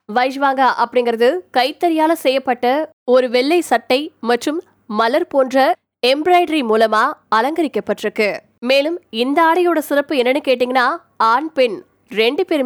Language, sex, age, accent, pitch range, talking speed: Tamil, female, 20-39, native, 235-300 Hz, 60 wpm